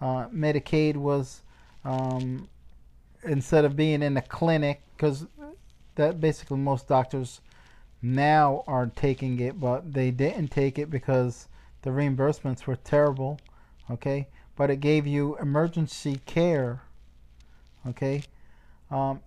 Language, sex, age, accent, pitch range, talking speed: English, male, 40-59, American, 135-155 Hz, 120 wpm